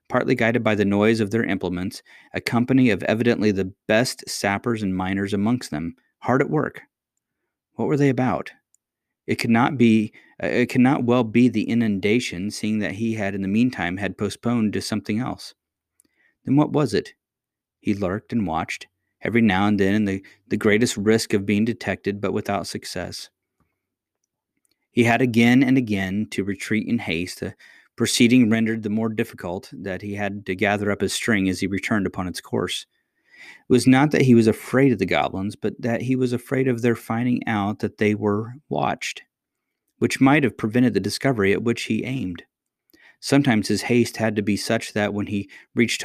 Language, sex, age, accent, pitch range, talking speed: English, male, 30-49, American, 100-120 Hz, 185 wpm